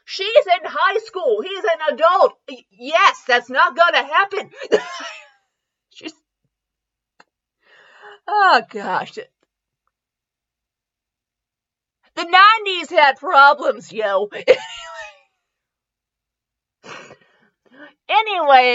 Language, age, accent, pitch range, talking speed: English, 30-49, American, 235-365 Hz, 65 wpm